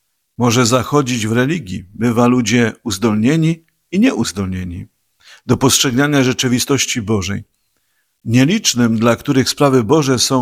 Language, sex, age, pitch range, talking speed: Polish, male, 50-69, 105-130 Hz, 110 wpm